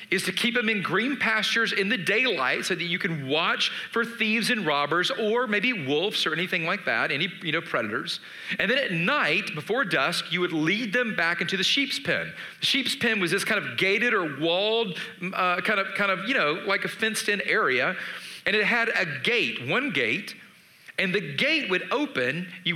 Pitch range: 170-220 Hz